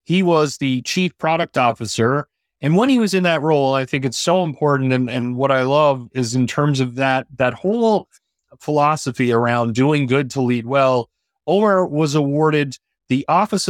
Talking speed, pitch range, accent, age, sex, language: 185 wpm, 125-160 Hz, American, 30-49, male, English